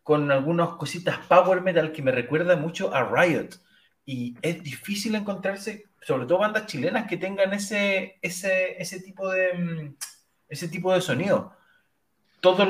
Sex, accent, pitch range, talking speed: male, Argentinian, 150-195 Hz, 145 wpm